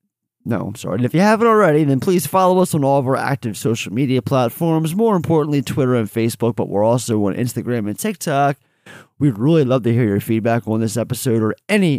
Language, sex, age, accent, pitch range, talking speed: English, male, 30-49, American, 105-140 Hz, 220 wpm